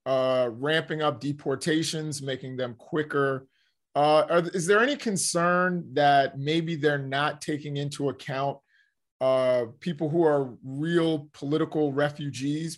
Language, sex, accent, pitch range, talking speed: English, male, American, 135-165 Hz, 120 wpm